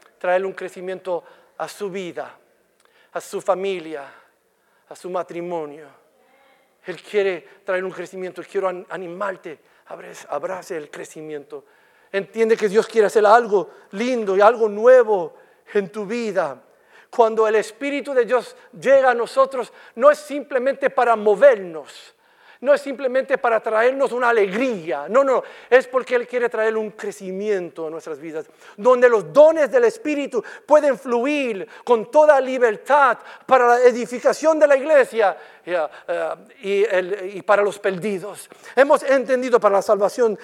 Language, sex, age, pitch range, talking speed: English, male, 50-69, 195-280 Hz, 135 wpm